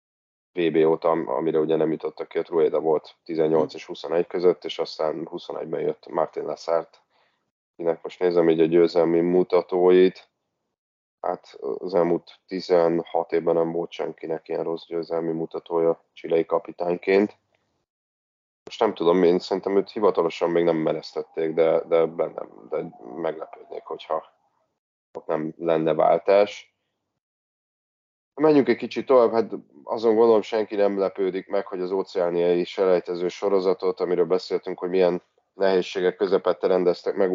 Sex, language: male, Hungarian